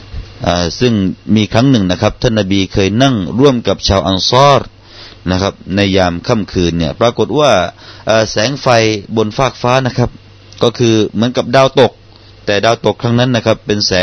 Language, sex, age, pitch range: Thai, male, 30-49, 100-125 Hz